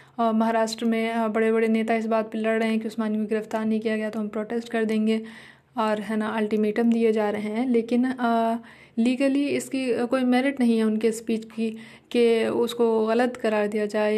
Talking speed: 195 wpm